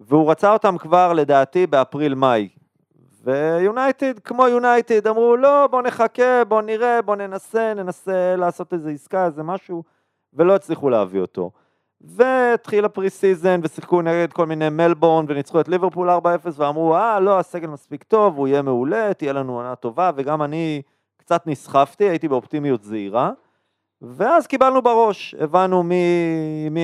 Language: Hebrew